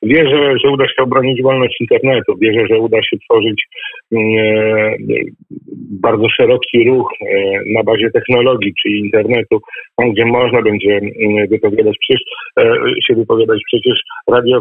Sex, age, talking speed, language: male, 50-69, 140 wpm, Polish